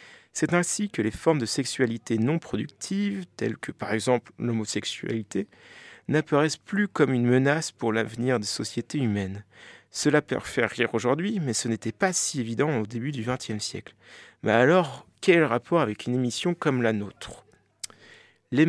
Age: 40-59